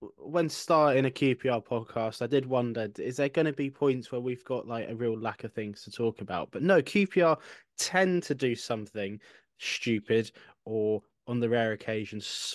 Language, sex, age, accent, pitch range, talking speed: English, male, 20-39, British, 115-150 Hz, 185 wpm